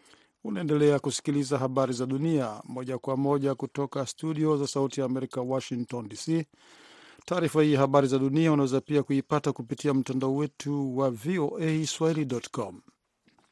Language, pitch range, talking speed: Swahili, 130-150 Hz, 130 wpm